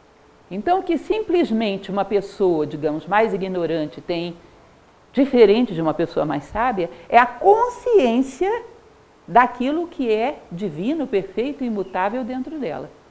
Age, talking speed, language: 50-69, 130 wpm, Portuguese